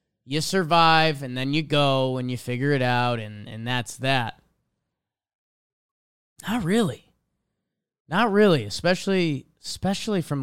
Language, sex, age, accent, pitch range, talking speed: English, male, 20-39, American, 125-195 Hz, 125 wpm